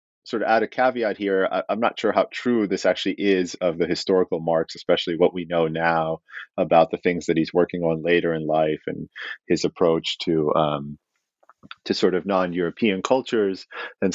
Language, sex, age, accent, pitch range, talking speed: English, male, 30-49, American, 90-110 Hz, 190 wpm